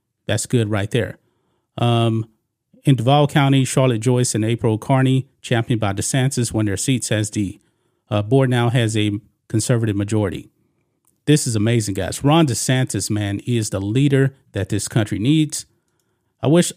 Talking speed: 160 wpm